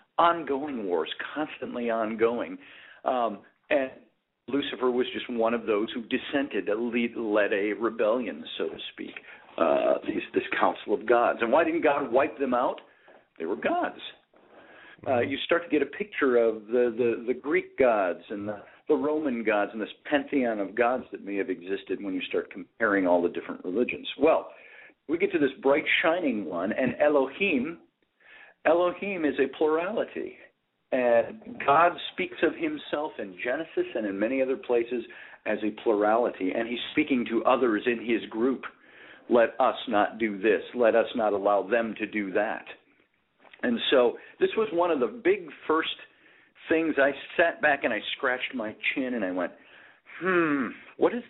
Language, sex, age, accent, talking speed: English, male, 50-69, American, 170 wpm